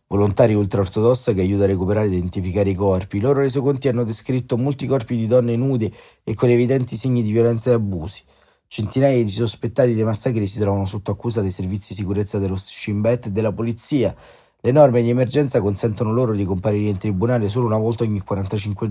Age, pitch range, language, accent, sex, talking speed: 30-49, 100-120 Hz, Italian, native, male, 195 wpm